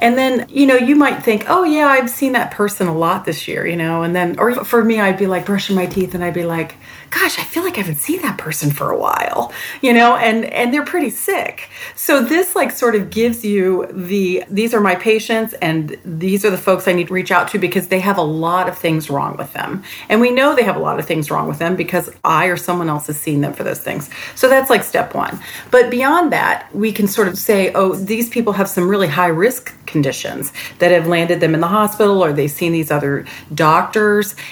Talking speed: 250 wpm